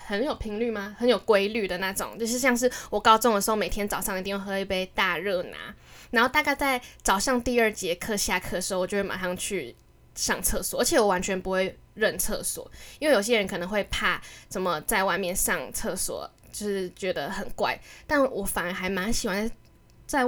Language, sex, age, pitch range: Chinese, female, 10-29, 195-240 Hz